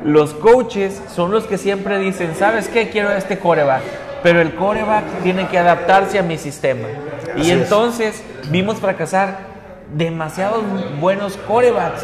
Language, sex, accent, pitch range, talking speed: Spanish, male, Mexican, 150-195 Hz, 140 wpm